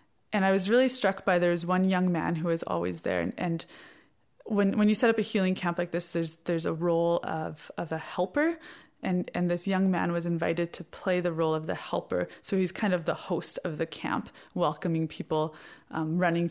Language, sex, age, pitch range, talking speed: English, female, 20-39, 165-195 Hz, 225 wpm